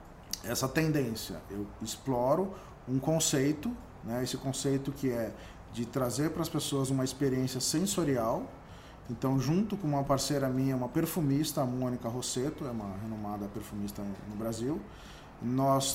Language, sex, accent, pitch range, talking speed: Portuguese, male, Brazilian, 120-155 Hz, 140 wpm